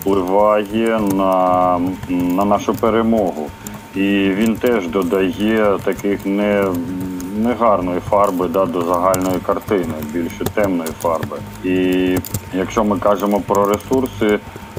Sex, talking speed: male, 95 wpm